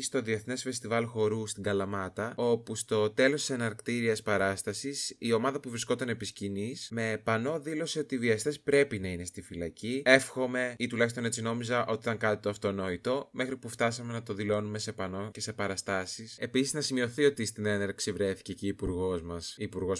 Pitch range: 100-130 Hz